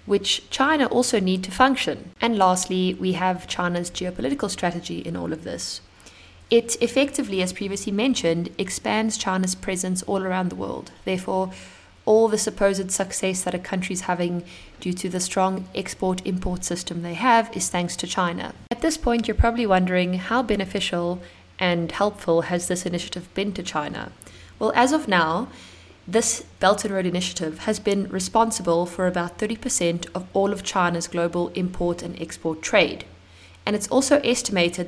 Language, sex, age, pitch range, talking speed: Italian, female, 20-39, 175-215 Hz, 160 wpm